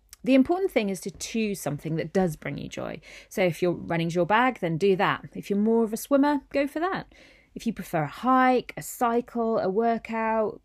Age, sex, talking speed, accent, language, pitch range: 30-49, female, 220 wpm, British, English, 165-230 Hz